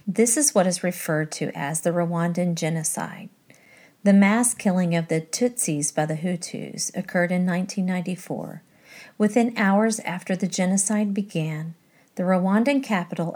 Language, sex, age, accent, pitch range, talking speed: English, female, 40-59, American, 175-220 Hz, 140 wpm